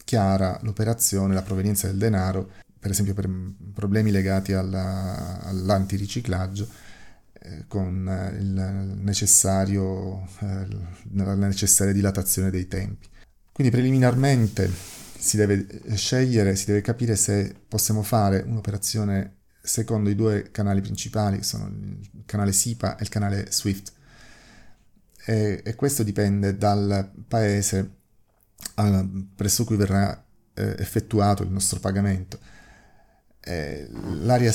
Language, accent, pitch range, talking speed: Italian, native, 95-110 Hz, 110 wpm